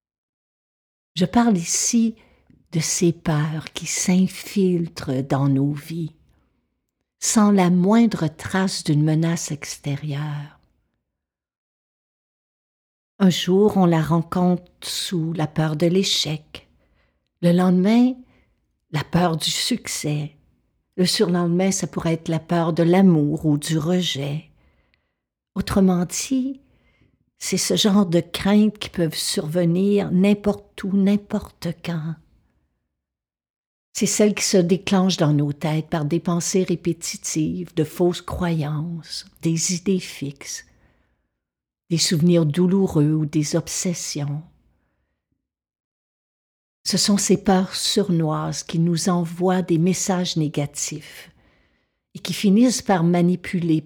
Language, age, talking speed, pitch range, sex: French, 60-79, 110 wpm, 150-190 Hz, female